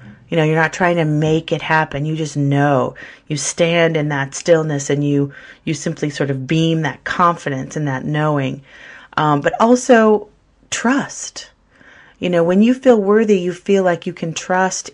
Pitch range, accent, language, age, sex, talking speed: 145-175 Hz, American, English, 40-59, female, 180 wpm